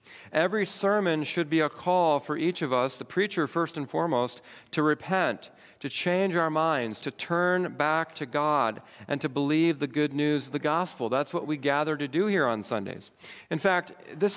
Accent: American